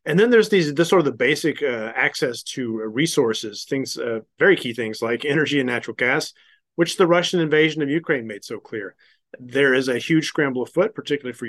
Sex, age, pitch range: male, 30-49, 125-150 Hz